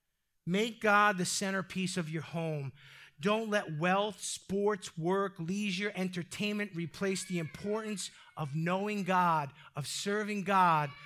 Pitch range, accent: 170-250 Hz, American